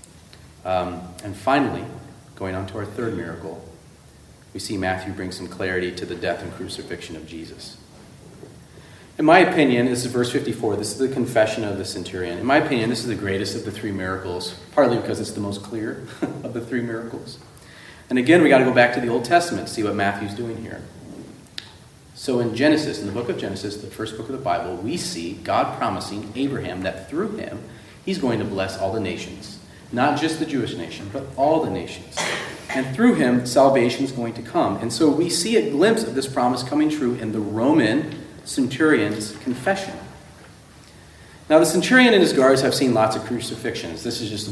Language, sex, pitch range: English, male, 95-135 Hz